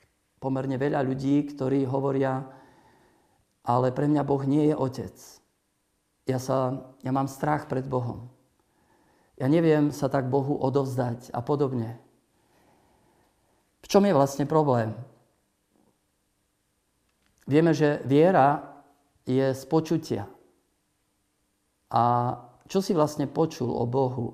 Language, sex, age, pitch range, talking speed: Slovak, male, 50-69, 130-150 Hz, 110 wpm